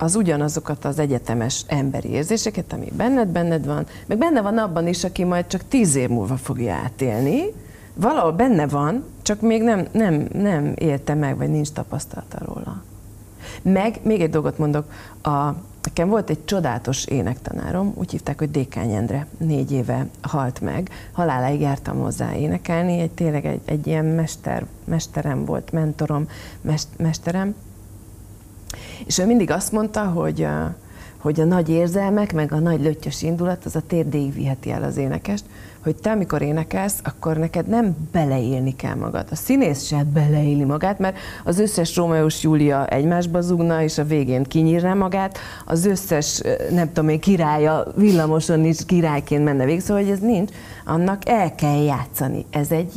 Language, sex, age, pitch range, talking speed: Hungarian, female, 40-59, 140-180 Hz, 160 wpm